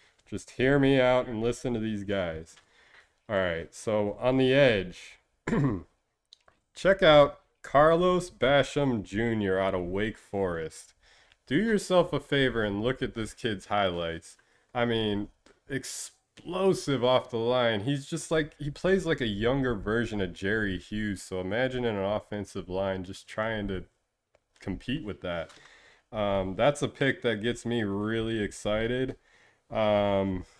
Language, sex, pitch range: English, male, 105-135 Hz